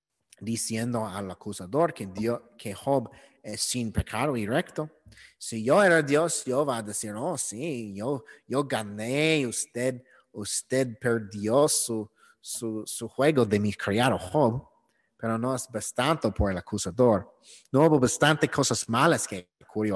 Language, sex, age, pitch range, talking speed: English, male, 30-49, 105-140 Hz, 150 wpm